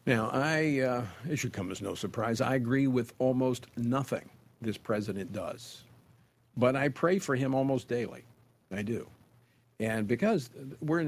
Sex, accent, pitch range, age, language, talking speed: male, American, 115-150 Hz, 50-69, English, 150 wpm